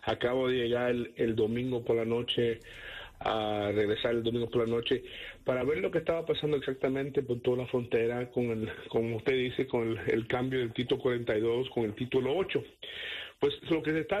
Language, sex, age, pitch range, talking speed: Spanish, male, 50-69, 120-145 Hz, 205 wpm